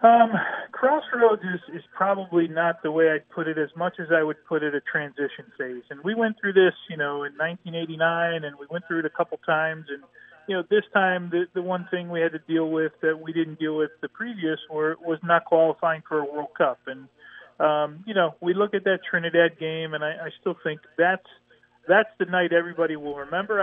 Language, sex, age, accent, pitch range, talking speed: English, male, 40-59, American, 155-185 Hz, 225 wpm